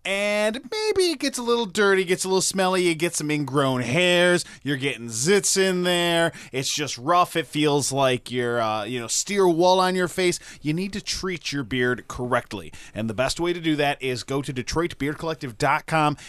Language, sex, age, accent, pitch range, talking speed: English, male, 20-39, American, 130-175 Hz, 200 wpm